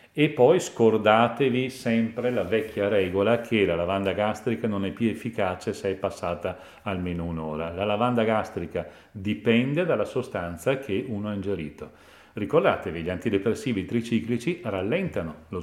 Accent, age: native, 40-59